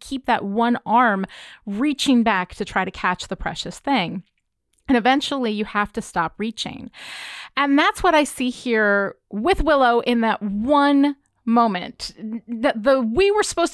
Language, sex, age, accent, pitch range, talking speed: English, female, 30-49, American, 200-265 Hz, 160 wpm